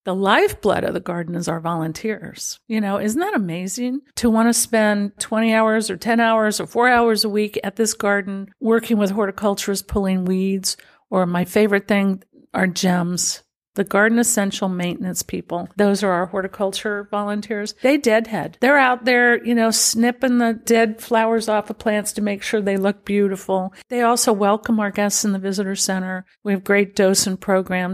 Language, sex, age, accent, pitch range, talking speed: English, female, 50-69, American, 185-220 Hz, 185 wpm